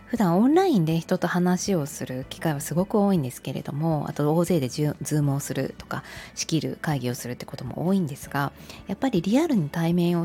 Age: 20-39